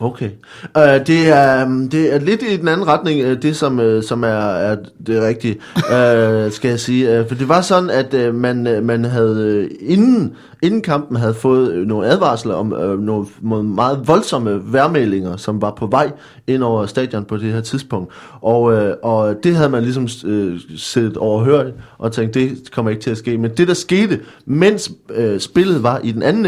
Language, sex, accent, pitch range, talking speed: Danish, male, native, 110-145 Hz, 205 wpm